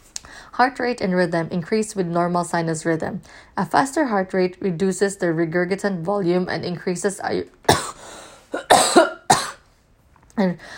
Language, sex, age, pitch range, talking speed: English, female, 20-39, 170-195 Hz, 115 wpm